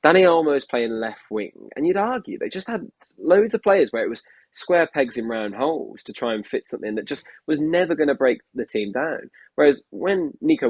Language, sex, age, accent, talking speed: English, male, 20-39, British, 230 wpm